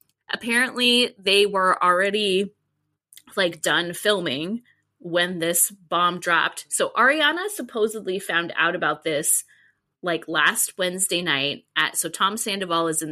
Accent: American